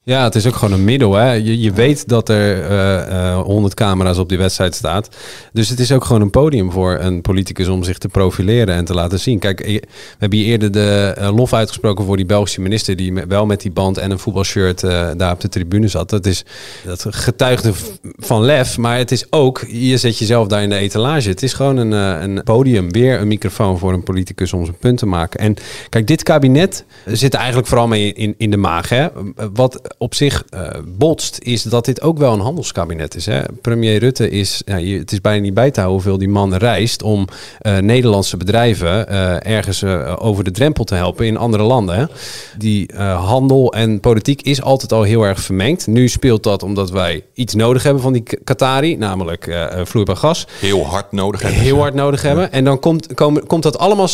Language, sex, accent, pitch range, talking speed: Dutch, male, Dutch, 95-125 Hz, 220 wpm